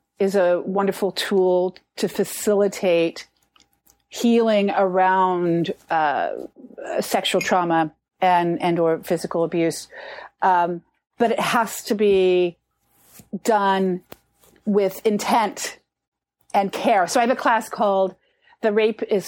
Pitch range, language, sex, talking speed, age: 190-245 Hz, English, female, 110 wpm, 40-59